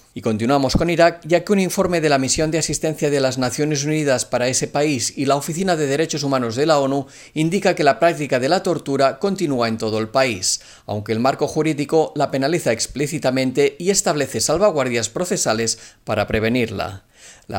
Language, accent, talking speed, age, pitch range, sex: Spanish, Spanish, 190 wpm, 40-59, 125-170 Hz, male